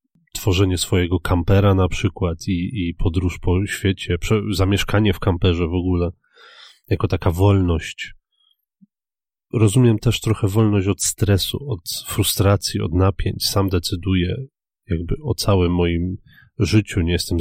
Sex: male